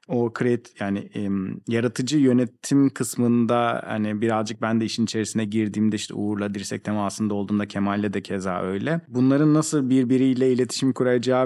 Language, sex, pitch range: Turkish, male, 115-155 Hz